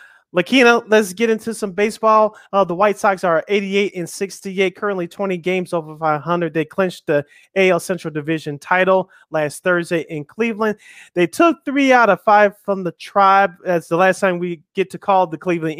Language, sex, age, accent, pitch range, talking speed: English, male, 30-49, American, 160-190 Hz, 185 wpm